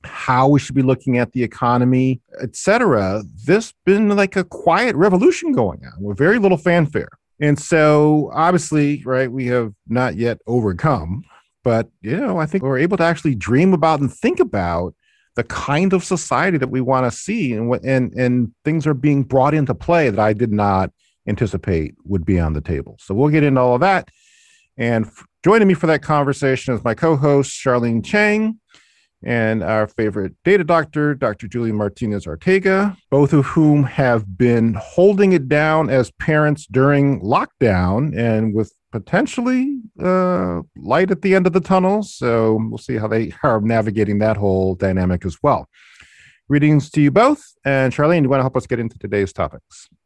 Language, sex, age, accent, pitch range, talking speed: English, male, 40-59, American, 115-165 Hz, 180 wpm